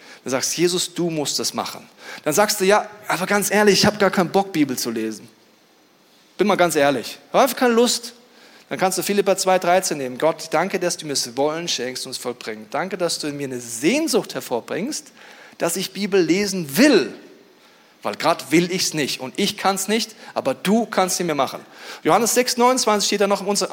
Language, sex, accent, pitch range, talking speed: German, male, German, 150-205 Hz, 205 wpm